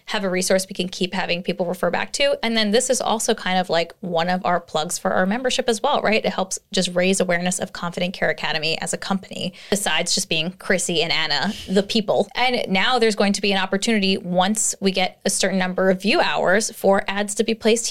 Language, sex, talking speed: English, female, 240 wpm